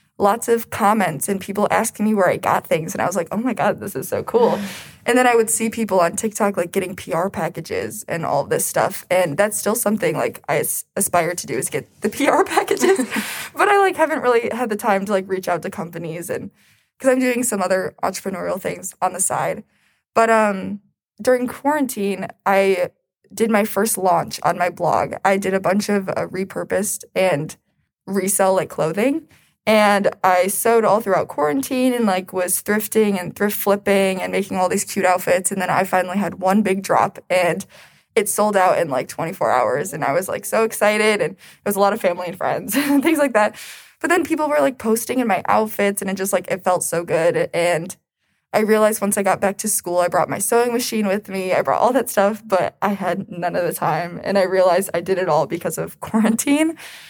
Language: English